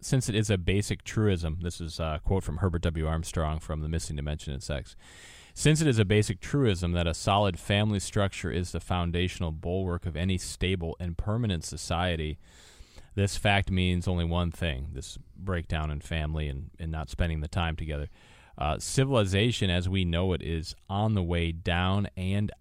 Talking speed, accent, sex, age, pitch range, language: 185 wpm, American, male, 30-49, 80-100 Hz, English